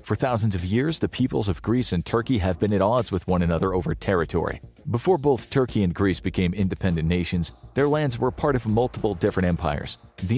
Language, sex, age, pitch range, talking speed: English, male, 40-59, 90-120 Hz, 210 wpm